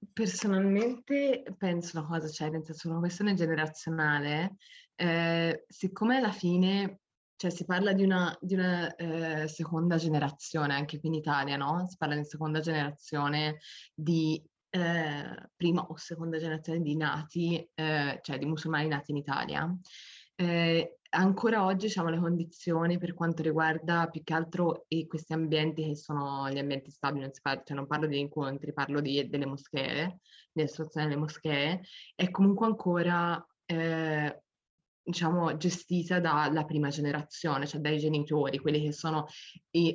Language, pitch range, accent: Italian, 150-175 Hz, native